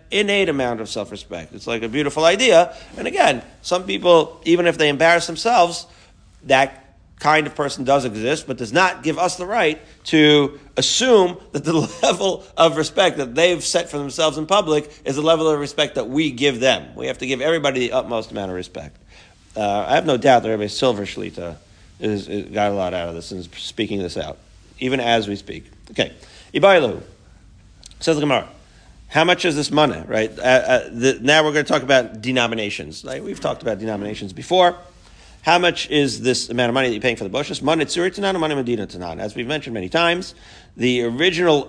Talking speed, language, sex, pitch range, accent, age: 200 wpm, English, male, 110-155 Hz, American, 40-59